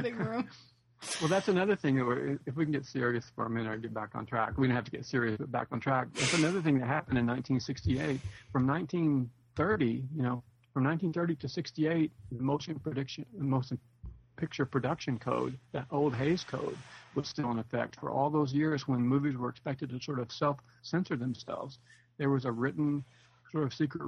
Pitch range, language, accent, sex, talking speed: 120-145 Hz, English, American, male, 200 wpm